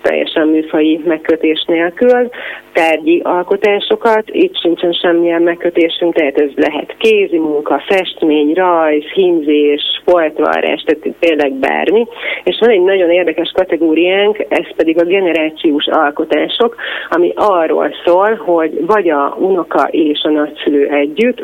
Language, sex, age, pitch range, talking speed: Hungarian, female, 30-49, 150-180 Hz, 120 wpm